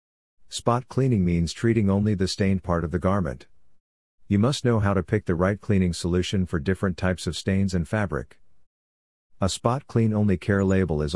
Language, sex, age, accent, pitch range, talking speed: English, male, 50-69, American, 85-105 Hz, 190 wpm